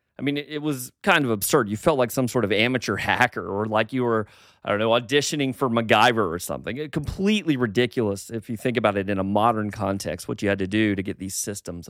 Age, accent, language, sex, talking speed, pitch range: 30-49, American, English, male, 235 wpm, 100-135 Hz